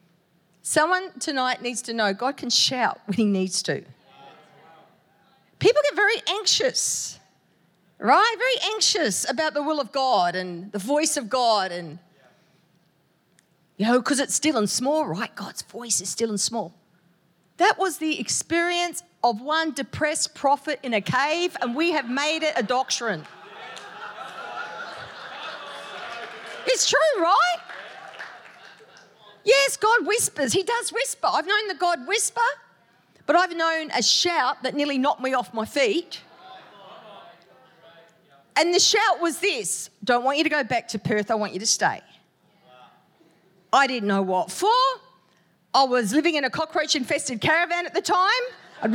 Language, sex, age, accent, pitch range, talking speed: English, female, 40-59, Australian, 210-335 Hz, 150 wpm